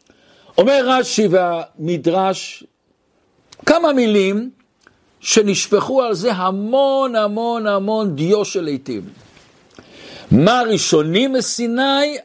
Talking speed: 85 wpm